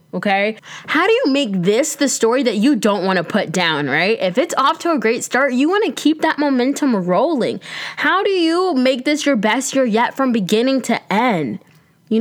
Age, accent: 10-29, American